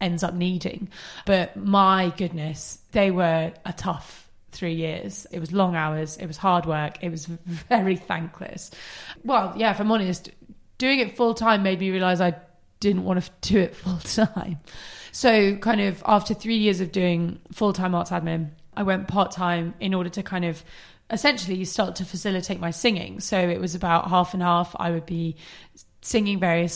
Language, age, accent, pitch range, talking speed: English, 20-39, British, 170-205 Hz, 175 wpm